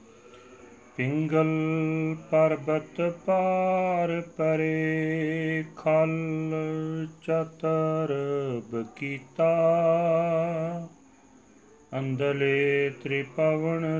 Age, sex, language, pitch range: 40-59, male, Punjabi, 150-165 Hz